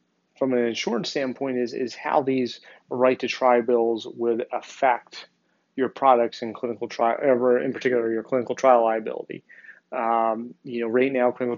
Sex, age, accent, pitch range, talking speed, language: male, 30-49, American, 115-130 Hz, 150 wpm, English